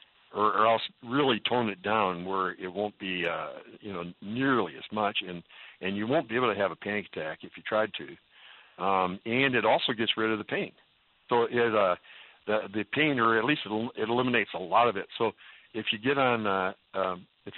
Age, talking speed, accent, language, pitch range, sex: 60-79, 220 wpm, American, English, 95-115 Hz, male